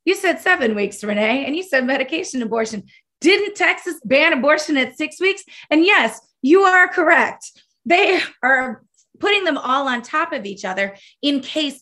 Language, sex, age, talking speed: English, female, 20-39, 175 wpm